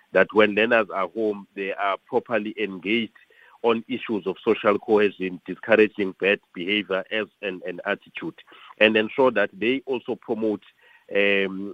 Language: English